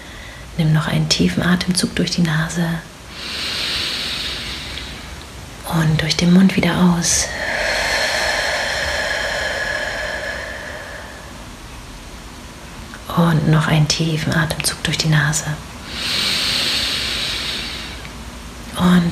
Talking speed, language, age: 70 wpm, German, 30-49